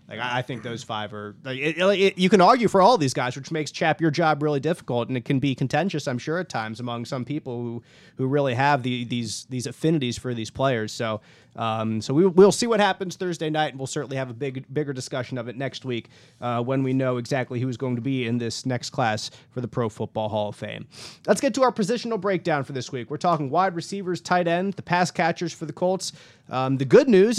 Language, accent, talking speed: English, American, 250 wpm